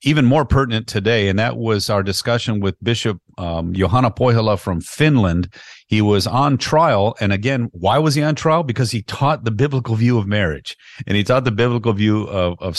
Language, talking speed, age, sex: English, 200 wpm, 40-59, male